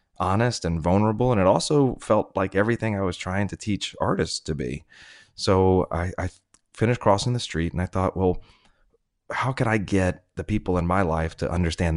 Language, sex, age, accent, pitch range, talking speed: English, male, 30-49, American, 85-100 Hz, 195 wpm